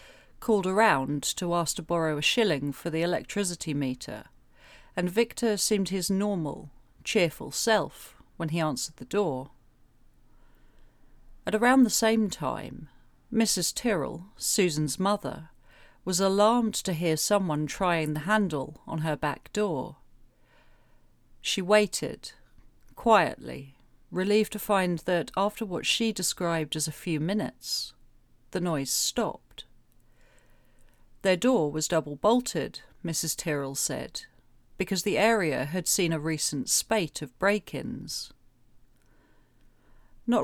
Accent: British